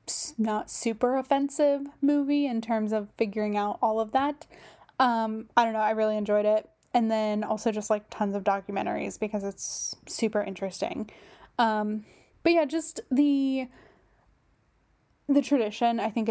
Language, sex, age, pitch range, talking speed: English, female, 10-29, 215-275 Hz, 150 wpm